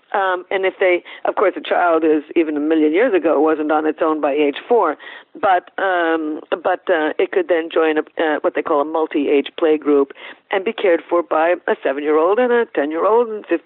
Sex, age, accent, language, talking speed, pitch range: female, 50-69, American, English, 215 wpm, 155-240 Hz